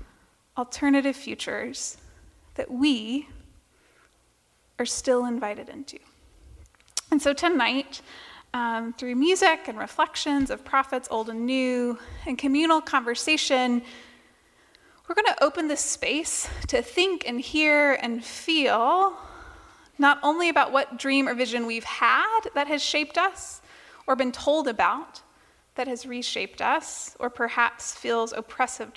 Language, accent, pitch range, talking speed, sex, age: English, American, 245-300 Hz, 125 wpm, female, 20-39